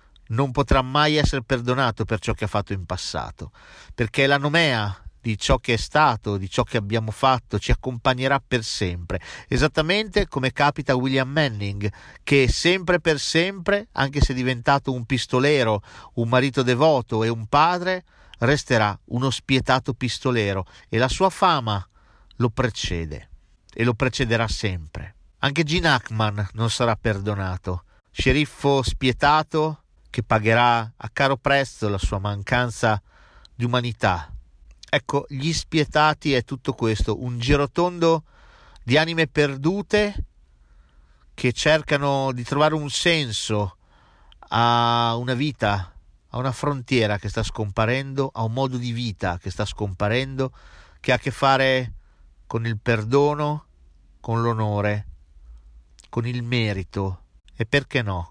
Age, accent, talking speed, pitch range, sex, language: 40-59, native, 135 wpm, 105-140 Hz, male, Italian